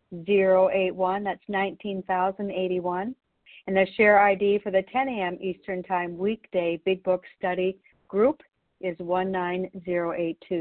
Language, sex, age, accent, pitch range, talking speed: English, female, 50-69, American, 180-205 Hz, 115 wpm